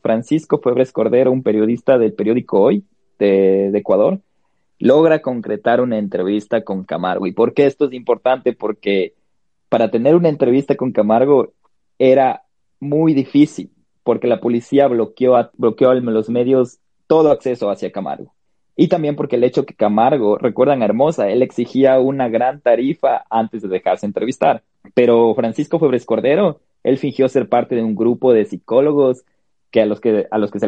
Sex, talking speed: male, 165 wpm